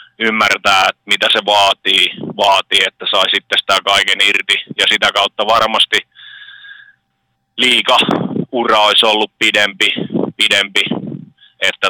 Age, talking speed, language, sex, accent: 30-49, 110 wpm, Finnish, male, native